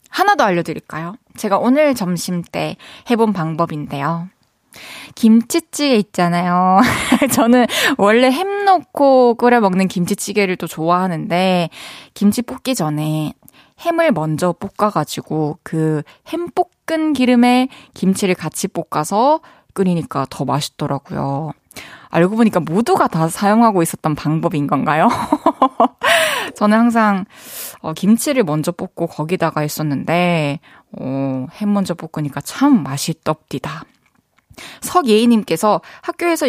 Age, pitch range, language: 20-39, 175-260 Hz, Korean